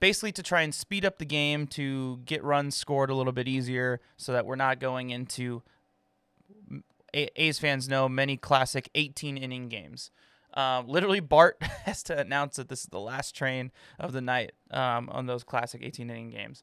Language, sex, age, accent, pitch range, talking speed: English, male, 20-39, American, 125-150 Hz, 180 wpm